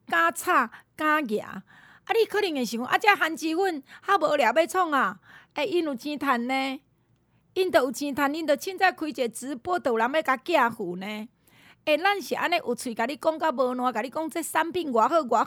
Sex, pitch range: female, 225-315 Hz